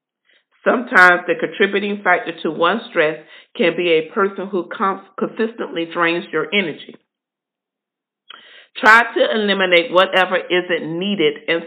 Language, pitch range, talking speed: English, 165-205 Hz, 125 wpm